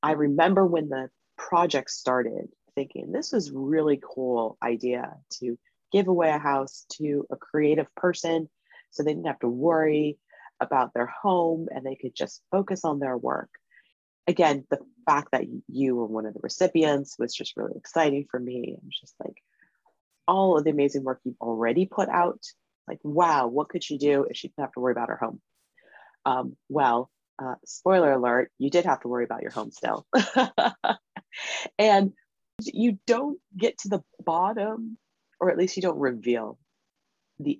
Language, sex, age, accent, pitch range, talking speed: English, female, 30-49, American, 125-180 Hz, 180 wpm